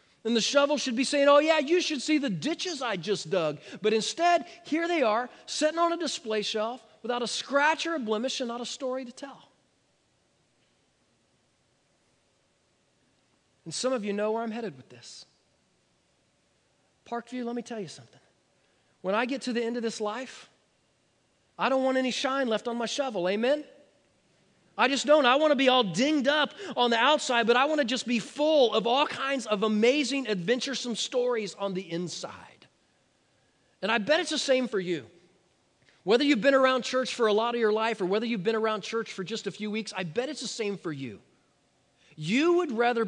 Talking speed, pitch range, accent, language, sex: 200 wpm, 195-265 Hz, American, English, male